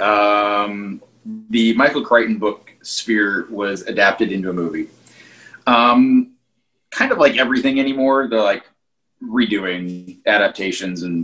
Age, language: 30-49, English